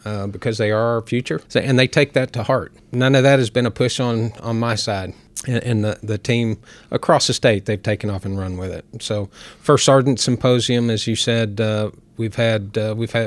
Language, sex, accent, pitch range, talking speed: English, male, American, 110-125 Hz, 220 wpm